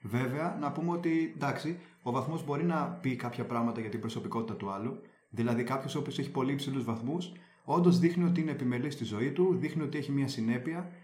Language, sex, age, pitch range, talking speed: Greek, male, 30-49, 130-175 Hz, 205 wpm